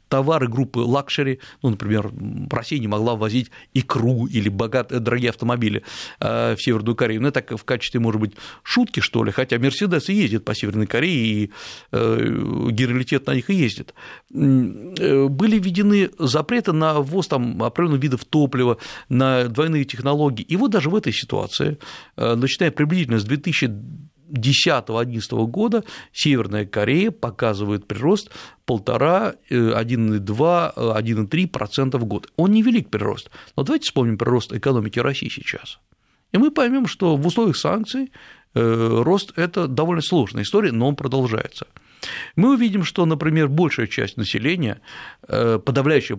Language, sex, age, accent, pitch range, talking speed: Russian, male, 50-69, native, 115-160 Hz, 135 wpm